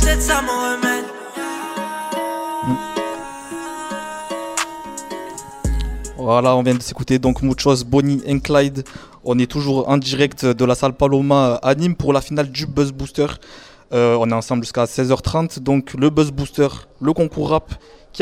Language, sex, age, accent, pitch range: French, male, 20-39, French, 130-155 Hz